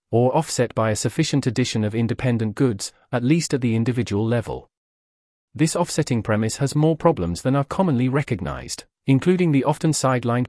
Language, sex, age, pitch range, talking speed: English, male, 40-59, 110-150 Hz, 165 wpm